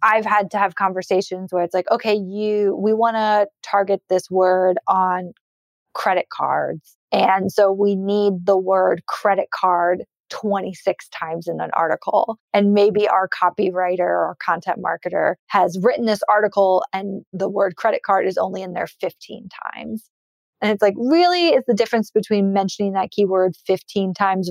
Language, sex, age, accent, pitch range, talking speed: English, female, 20-39, American, 185-220 Hz, 165 wpm